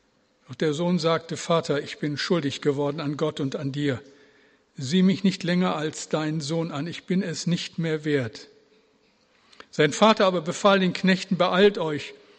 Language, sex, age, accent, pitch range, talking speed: German, male, 60-79, German, 145-190 Hz, 175 wpm